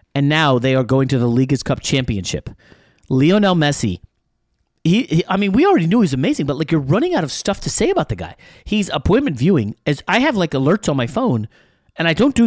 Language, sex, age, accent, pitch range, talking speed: English, male, 30-49, American, 125-175 Hz, 230 wpm